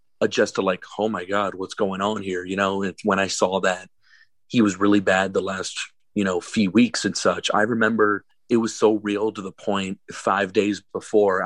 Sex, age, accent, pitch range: male, 30-49, American, 95-110 Hz